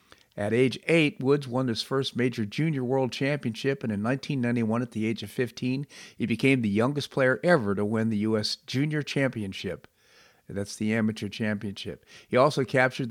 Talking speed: 175 wpm